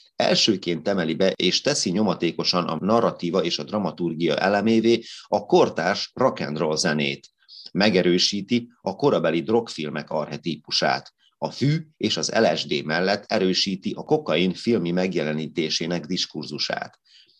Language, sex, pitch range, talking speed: Hungarian, male, 80-110 Hz, 115 wpm